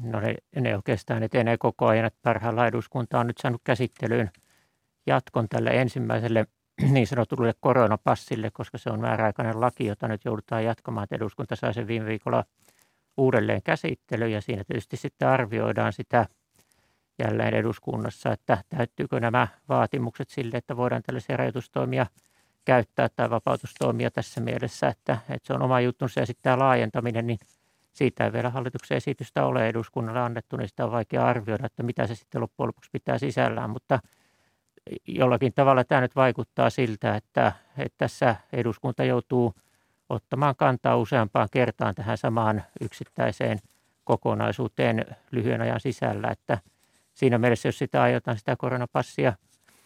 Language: Finnish